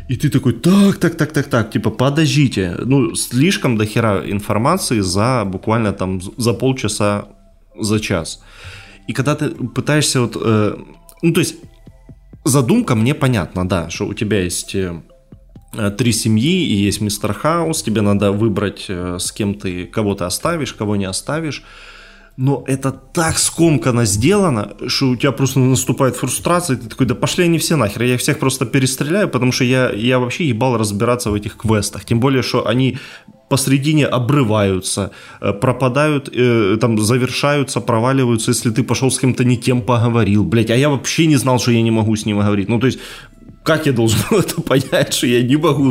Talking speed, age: 170 wpm, 20-39